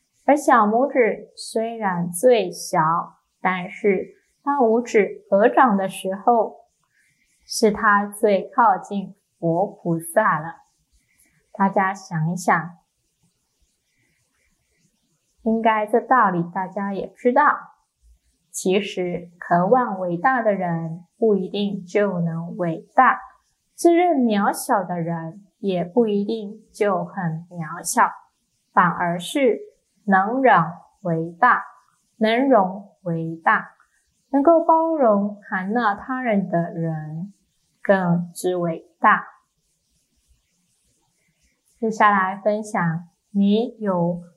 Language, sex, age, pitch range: Chinese, female, 10-29, 175-230 Hz